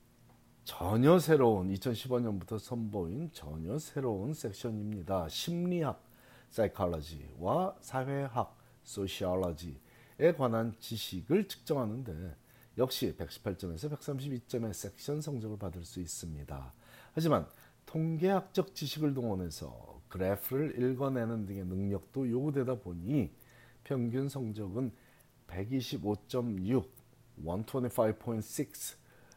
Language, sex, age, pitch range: Korean, male, 40-59, 100-135 Hz